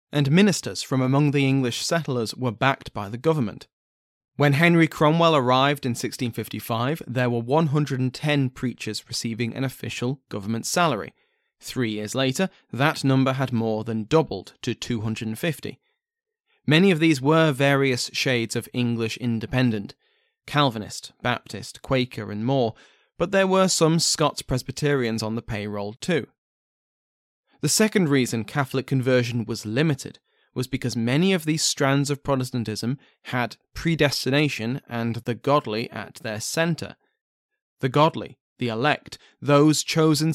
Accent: British